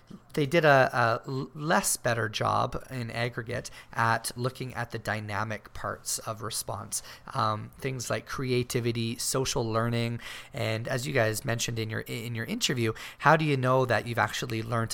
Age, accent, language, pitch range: 30-49, American, English, 110-125 Hz